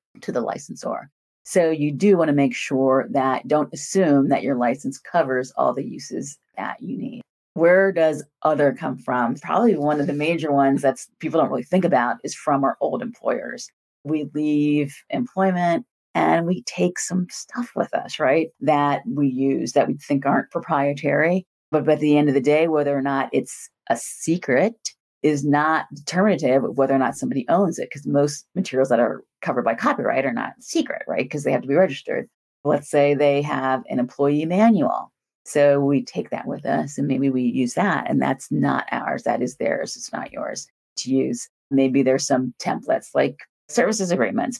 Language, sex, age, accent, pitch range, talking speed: English, female, 40-59, American, 140-175 Hz, 190 wpm